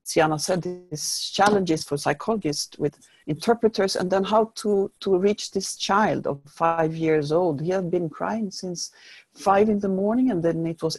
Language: English